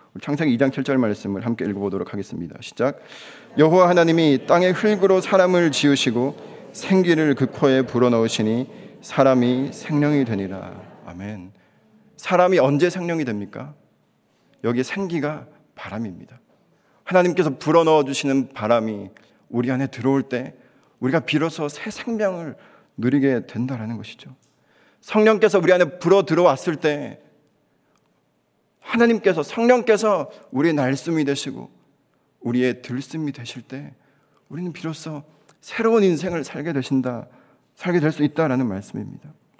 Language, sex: Korean, male